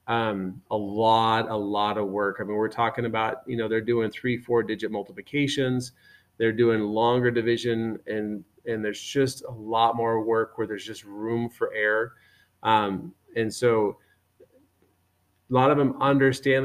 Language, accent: English, American